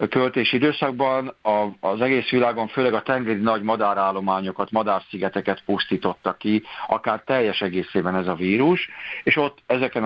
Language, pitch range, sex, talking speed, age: Hungarian, 95-115 Hz, male, 130 wpm, 50-69